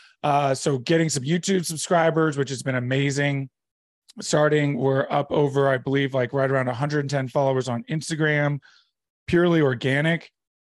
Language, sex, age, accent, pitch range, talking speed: English, male, 30-49, American, 135-160 Hz, 140 wpm